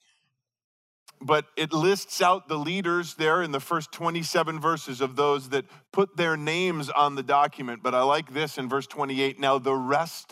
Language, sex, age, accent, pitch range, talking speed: English, male, 40-59, American, 135-165 Hz, 180 wpm